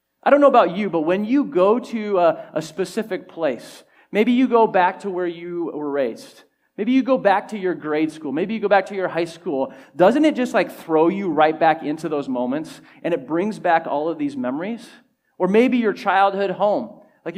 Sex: male